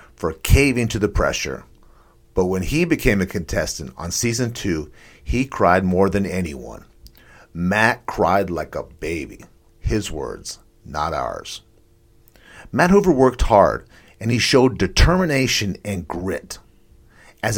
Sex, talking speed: male, 135 wpm